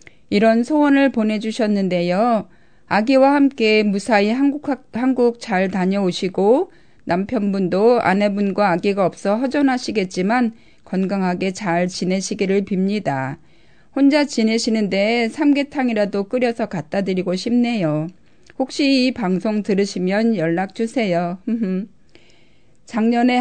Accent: native